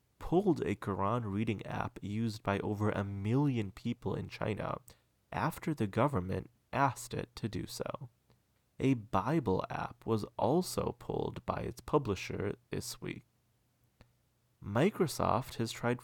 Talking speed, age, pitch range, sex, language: 130 wpm, 20-39, 105-130 Hz, male, English